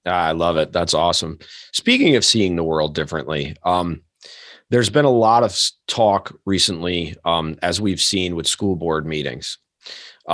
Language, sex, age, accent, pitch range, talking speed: English, male, 30-49, American, 80-100 Hz, 165 wpm